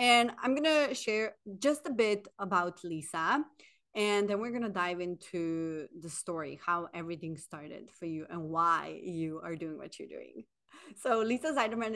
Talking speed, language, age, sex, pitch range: 165 wpm, English, 30-49, female, 170-210 Hz